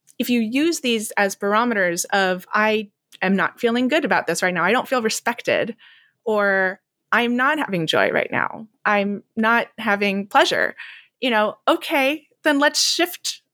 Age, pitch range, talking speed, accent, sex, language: 20-39, 195-255 Hz, 165 wpm, American, female, English